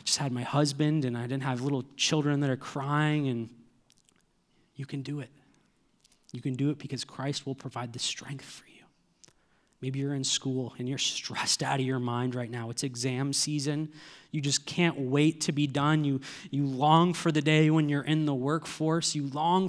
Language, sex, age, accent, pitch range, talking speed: English, male, 20-39, American, 135-165 Hz, 200 wpm